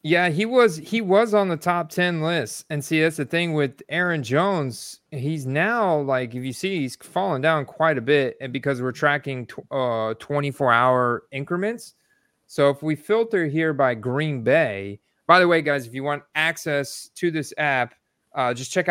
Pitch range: 125-155 Hz